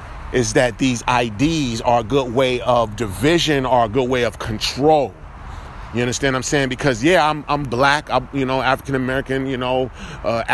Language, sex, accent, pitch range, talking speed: English, male, American, 110-145 Hz, 195 wpm